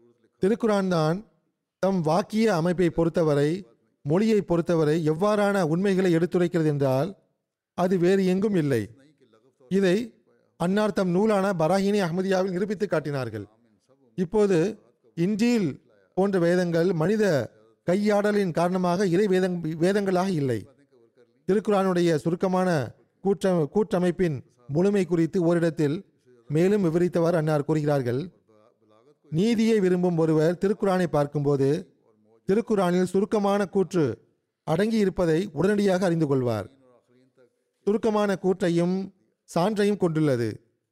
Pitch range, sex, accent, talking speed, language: 150-195 Hz, male, native, 90 wpm, Tamil